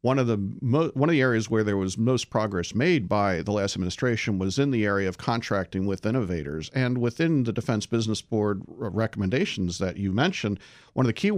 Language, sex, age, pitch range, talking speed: English, male, 50-69, 105-135 Hz, 210 wpm